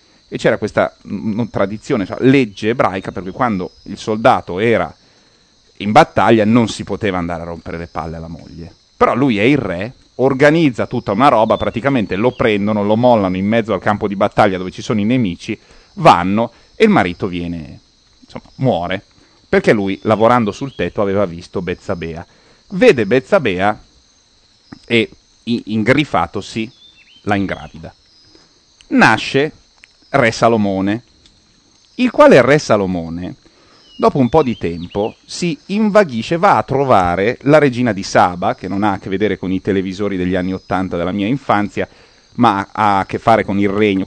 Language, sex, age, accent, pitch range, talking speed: Italian, male, 40-59, native, 95-120 Hz, 160 wpm